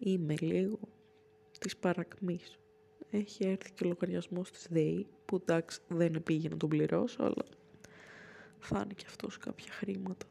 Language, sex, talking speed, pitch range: Greek, female, 145 wpm, 165-220 Hz